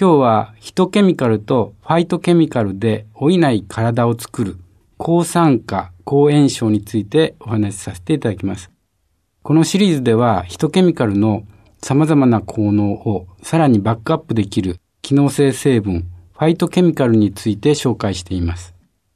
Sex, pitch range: male, 95-145 Hz